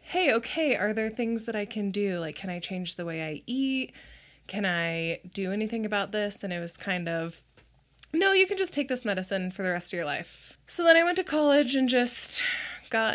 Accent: American